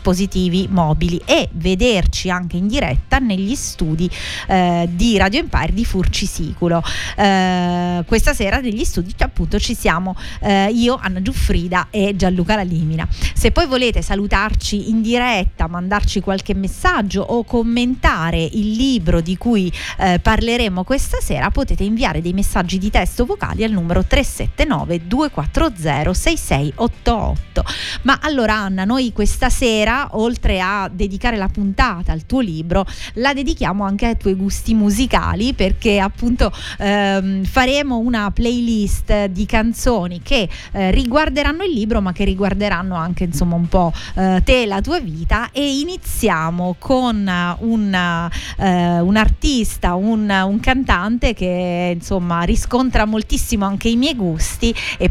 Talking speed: 135 wpm